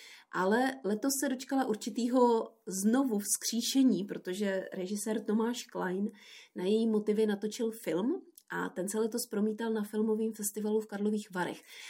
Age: 30-49